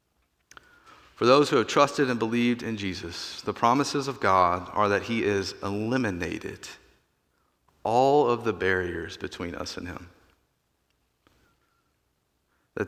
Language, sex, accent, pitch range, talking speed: English, male, American, 105-150 Hz, 125 wpm